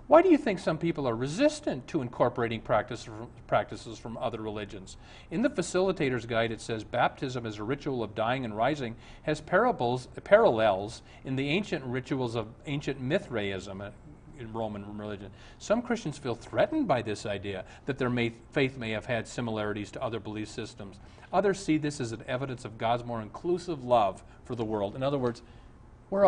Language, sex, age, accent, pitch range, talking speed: English, male, 40-59, American, 110-155 Hz, 180 wpm